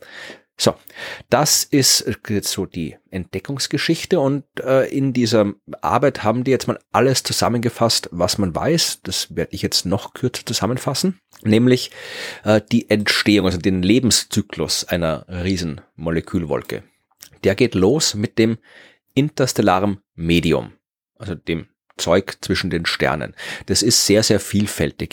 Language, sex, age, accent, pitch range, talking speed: German, male, 30-49, German, 95-120 Hz, 130 wpm